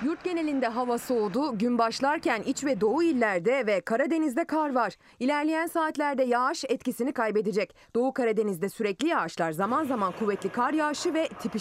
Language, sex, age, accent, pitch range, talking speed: Turkish, female, 30-49, native, 205-275 Hz, 155 wpm